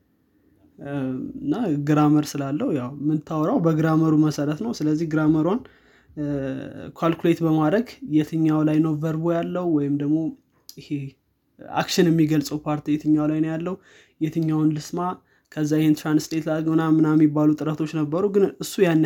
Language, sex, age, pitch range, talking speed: Amharic, male, 20-39, 145-160 Hz, 125 wpm